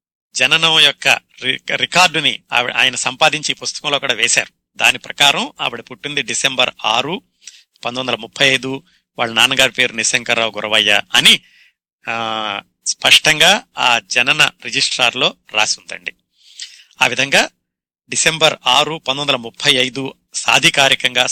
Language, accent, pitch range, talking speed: Telugu, native, 120-160 Hz, 100 wpm